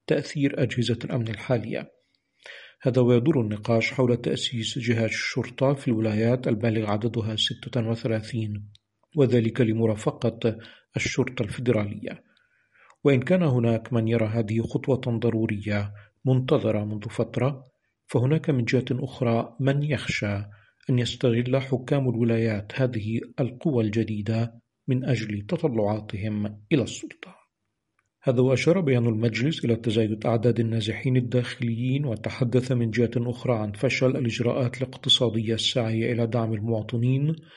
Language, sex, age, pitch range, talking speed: Arabic, male, 50-69, 115-130 Hz, 110 wpm